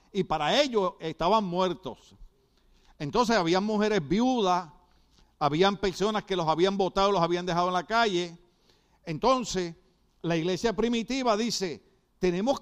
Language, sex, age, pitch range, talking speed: Spanish, male, 50-69, 145-210 Hz, 130 wpm